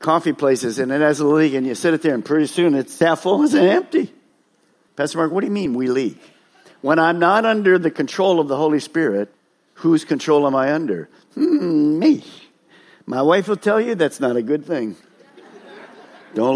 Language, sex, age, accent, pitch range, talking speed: English, male, 50-69, American, 160-235 Hz, 205 wpm